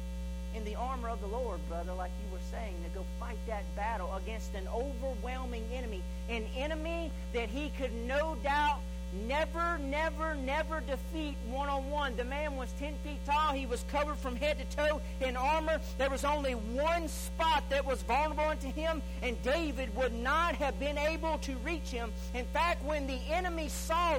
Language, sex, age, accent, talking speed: English, male, 40-59, American, 180 wpm